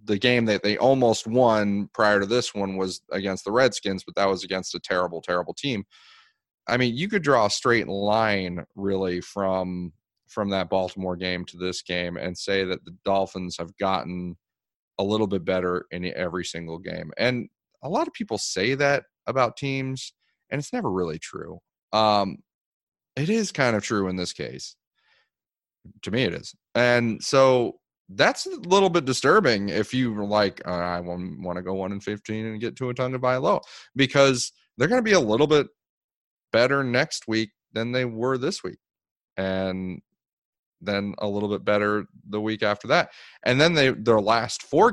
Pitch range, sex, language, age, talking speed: 95-125 Hz, male, English, 30-49, 185 wpm